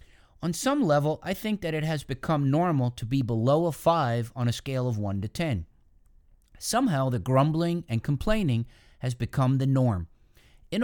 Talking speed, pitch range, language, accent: 175 wpm, 125-180 Hz, English, American